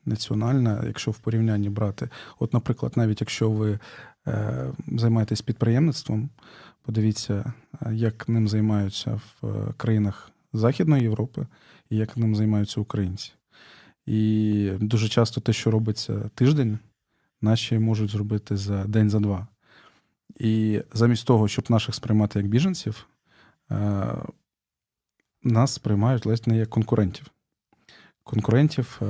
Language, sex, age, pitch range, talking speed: Ukrainian, male, 20-39, 105-120 Hz, 115 wpm